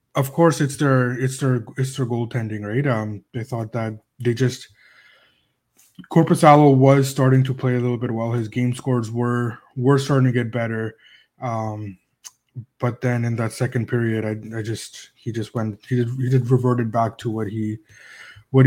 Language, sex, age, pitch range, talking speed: English, male, 20-39, 115-135 Hz, 185 wpm